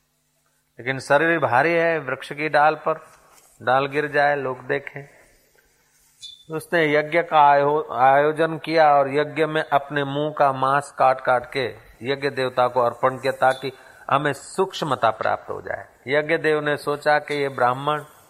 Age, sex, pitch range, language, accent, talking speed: 40-59, male, 130-155 Hz, Hindi, native, 155 wpm